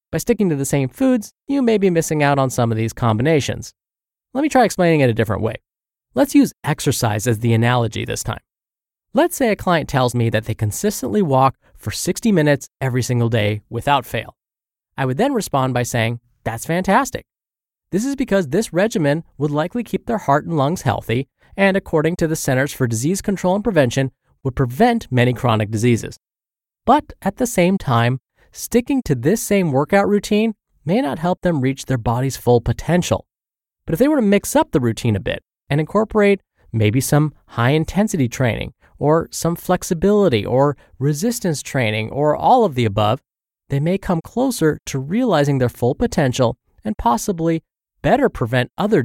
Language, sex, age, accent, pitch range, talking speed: English, male, 20-39, American, 120-195 Hz, 180 wpm